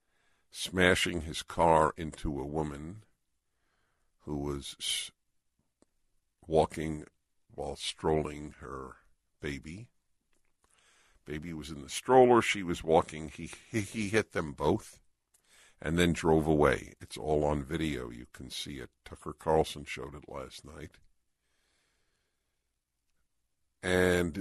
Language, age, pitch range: English, 60-79, 75-90 Hz